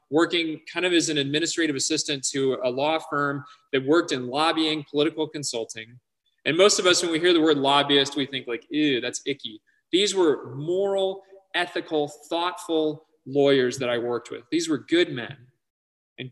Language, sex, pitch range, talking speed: English, male, 145-190 Hz, 175 wpm